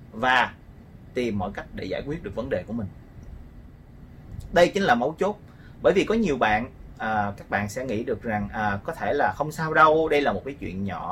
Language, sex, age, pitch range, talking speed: Vietnamese, male, 30-49, 105-165 Hz, 215 wpm